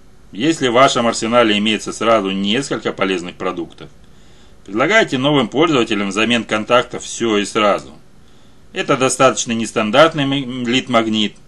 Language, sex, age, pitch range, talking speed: Russian, male, 30-49, 105-130 Hz, 110 wpm